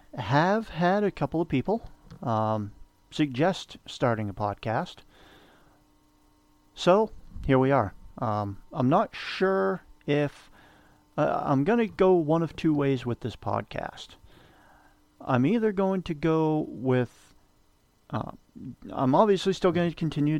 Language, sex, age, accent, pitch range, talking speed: English, male, 50-69, American, 115-150 Hz, 130 wpm